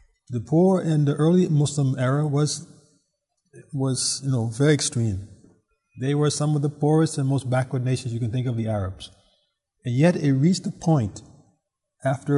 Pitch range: 130-175 Hz